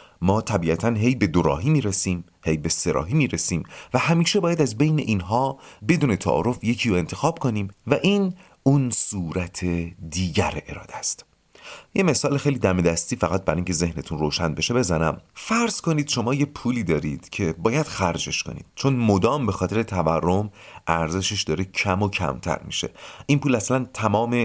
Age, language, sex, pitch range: 40-59, Persian, male, 90-145 Hz